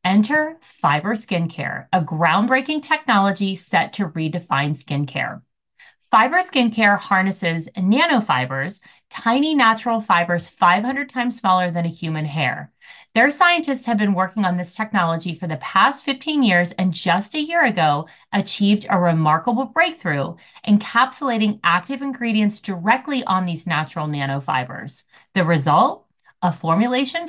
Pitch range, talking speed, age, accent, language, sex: 170-235 Hz, 130 wpm, 30-49, American, English, female